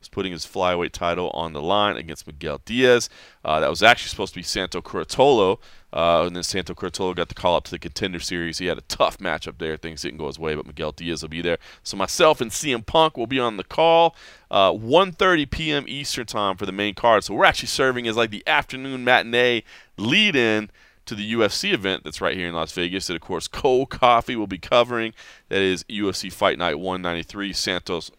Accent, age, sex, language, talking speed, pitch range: American, 30-49, male, English, 215 wpm, 95-135 Hz